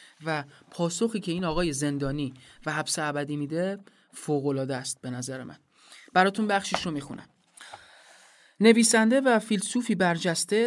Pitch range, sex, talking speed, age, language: 150-190 Hz, male, 130 wpm, 30-49, Persian